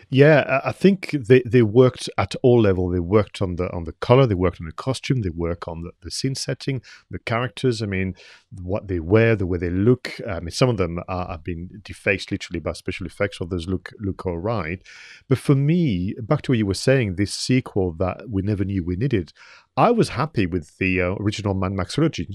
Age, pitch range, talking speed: 40-59, 90-115 Hz, 225 wpm